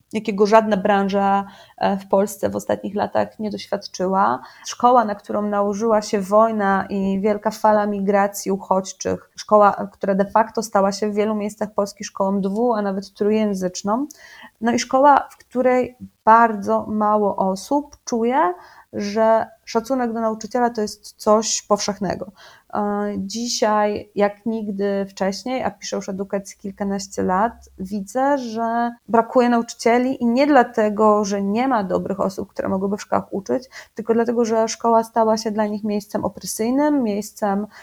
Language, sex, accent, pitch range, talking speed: Polish, female, native, 200-235 Hz, 145 wpm